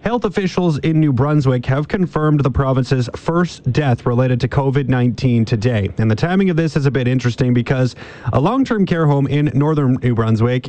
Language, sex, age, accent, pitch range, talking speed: English, male, 30-49, American, 125-160 Hz, 185 wpm